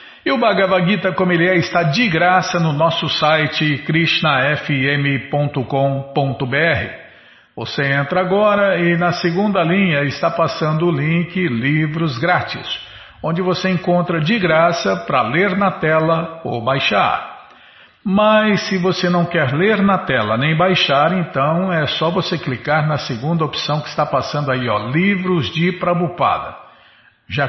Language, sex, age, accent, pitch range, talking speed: Portuguese, male, 50-69, Brazilian, 135-175 Hz, 140 wpm